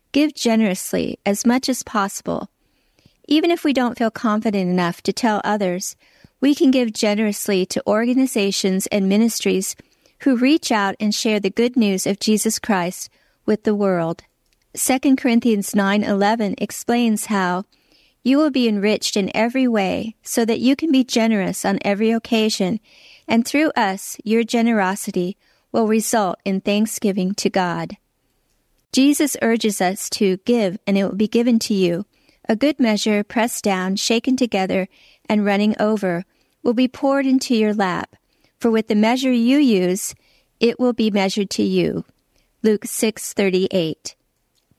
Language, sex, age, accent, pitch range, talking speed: English, female, 50-69, American, 195-240 Hz, 150 wpm